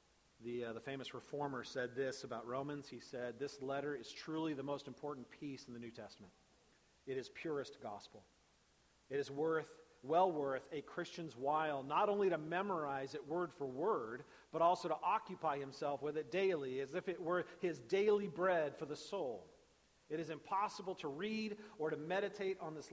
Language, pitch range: English, 125-175 Hz